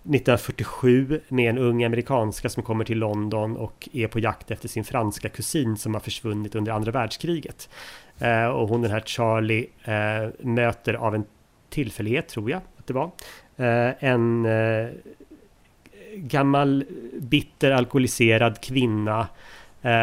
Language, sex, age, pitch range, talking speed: English, male, 30-49, 110-125 Hz, 125 wpm